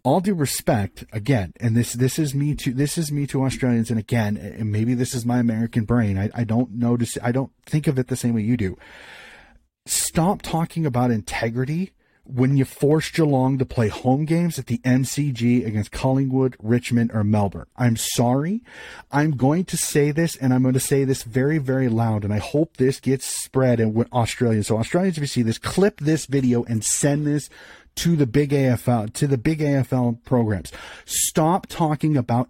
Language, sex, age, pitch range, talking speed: English, male, 30-49, 115-145 Hz, 200 wpm